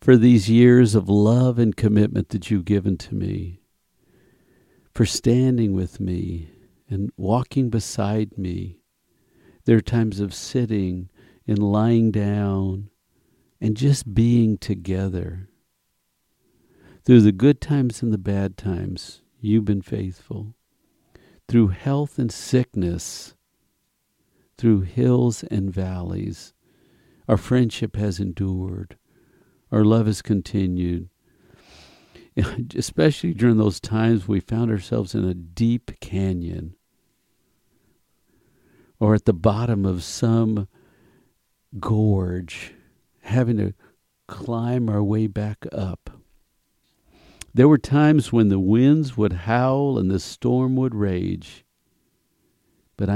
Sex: male